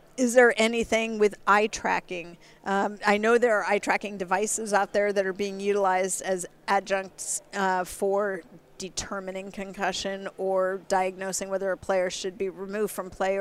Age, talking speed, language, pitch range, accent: 50-69, 160 wpm, English, 190-225 Hz, American